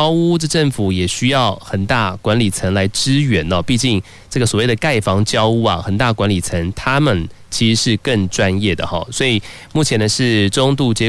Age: 30-49